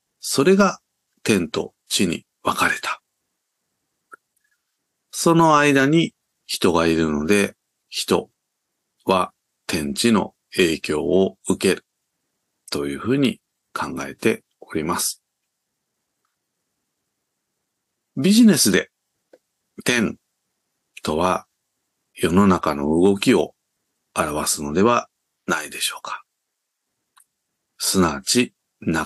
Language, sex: Japanese, male